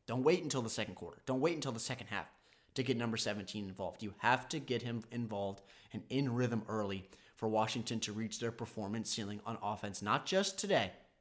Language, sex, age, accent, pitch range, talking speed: English, male, 30-49, American, 105-135 Hz, 210 wpm